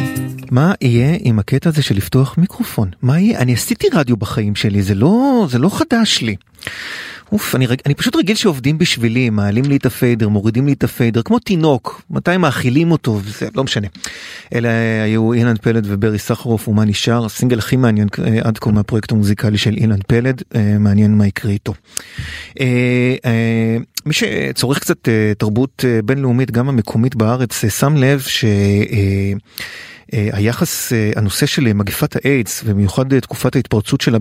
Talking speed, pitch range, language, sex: 150 wpm, 110-130 Hz, Hebrew, male